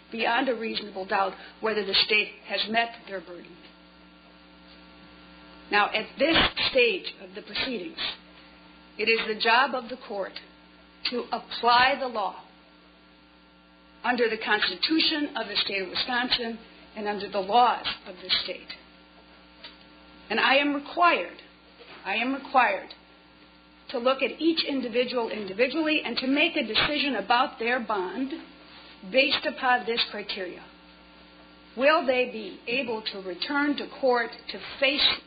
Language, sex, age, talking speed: English, female, 50-69, 135 wpm